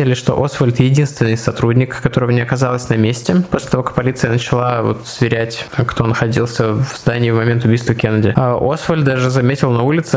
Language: Russian